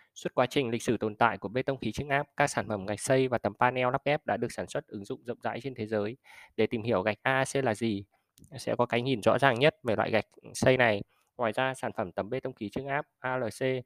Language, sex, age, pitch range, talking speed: Vietnamese, male, 20-39, 105-135 Hz, 280 wpm